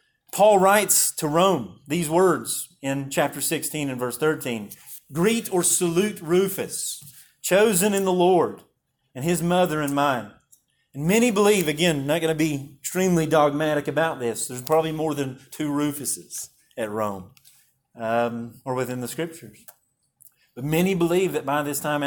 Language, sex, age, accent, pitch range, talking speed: English, male, 30-49, American, 130-165 Hz, 160 wpm